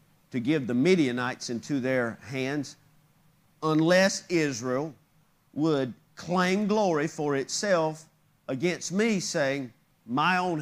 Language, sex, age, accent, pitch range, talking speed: English, male, 50-69, American, 145-190 Hz, 105 wpm